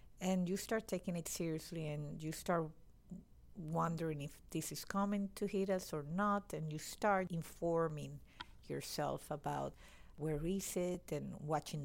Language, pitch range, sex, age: English, 160-195 Hz, female, 50-69